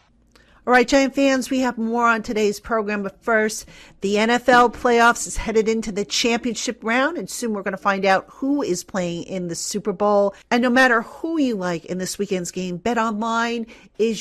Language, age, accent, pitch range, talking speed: English, 50-69, American, 190-235 Hz, 200 wpm